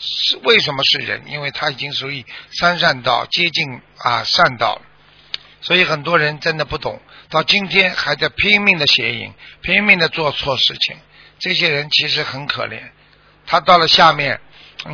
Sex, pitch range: male, 140-165 Hz